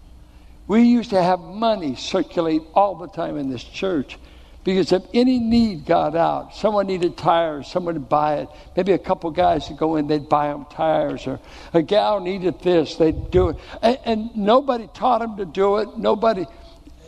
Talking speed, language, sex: 185 wpm, English, male